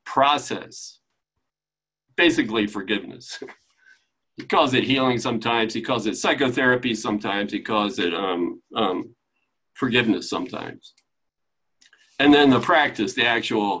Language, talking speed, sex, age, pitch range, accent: English, 115 wpm, male, 50-69, 130-210 Hz, American